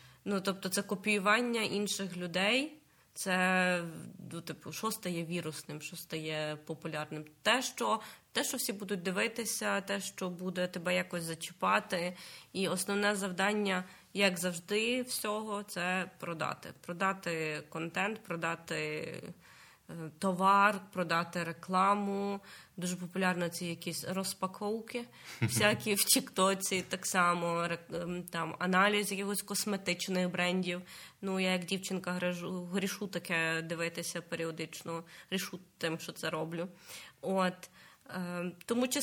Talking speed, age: 110 wpm, 20-39